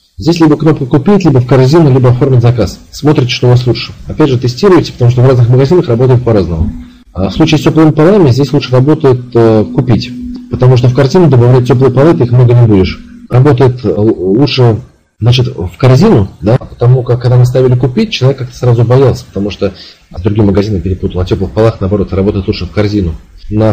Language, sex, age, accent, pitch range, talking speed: Russian, male, 40-59, native, 105-140 Hz, 195 wpm